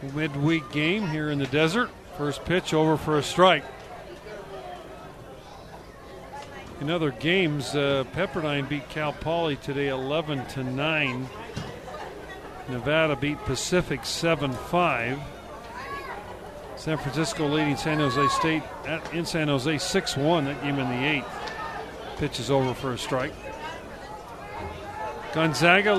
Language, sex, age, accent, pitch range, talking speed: English, male, 50-69, American, 140-170 Hz, 110 wpm